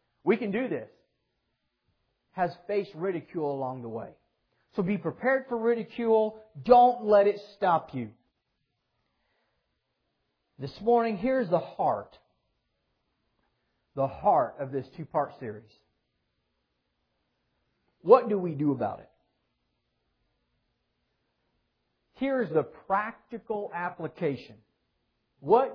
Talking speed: 100 wpm